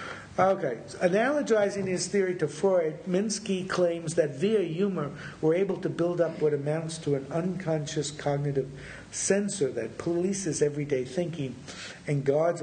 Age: 50-69